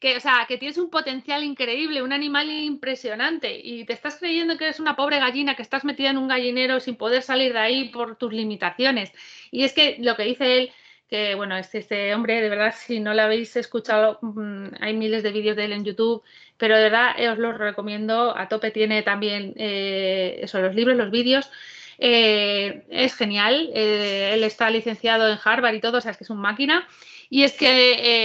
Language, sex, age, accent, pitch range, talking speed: Spanish, female, 30-49, Spanish, 220-275 Hz, 210 wpm